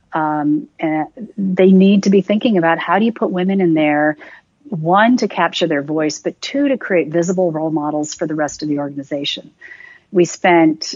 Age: 40-59